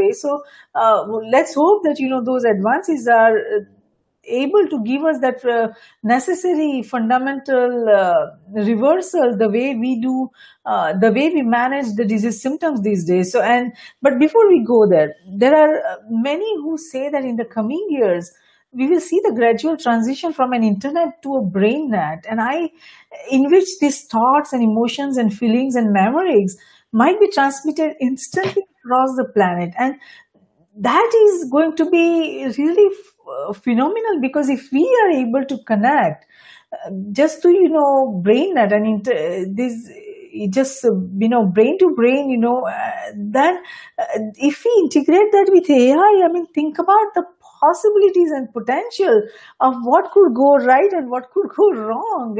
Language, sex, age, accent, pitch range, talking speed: English, female, 50-69, Indian, 235-345 Hz, 170 wpm